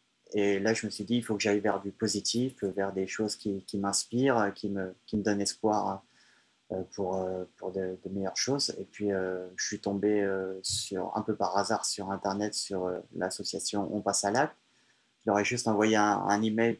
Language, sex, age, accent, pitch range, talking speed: French, male, 30-49, French, 100-110 Hz, 200 wpm